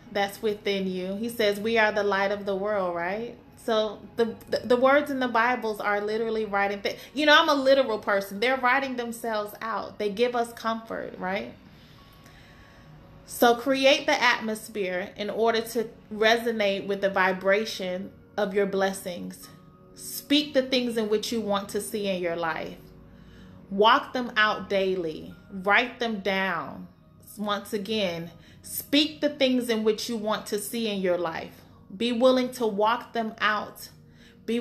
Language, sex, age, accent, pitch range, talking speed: English, female, 20-39, American, 195-235 Hz, 165 wpm